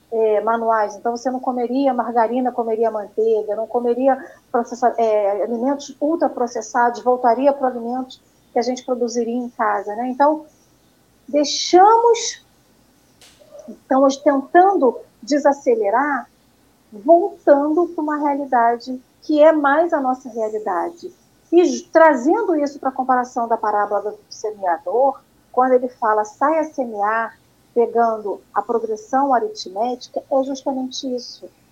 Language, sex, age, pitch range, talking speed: Portuguese, female, 40-59, 230-295 Hz, 120 wpm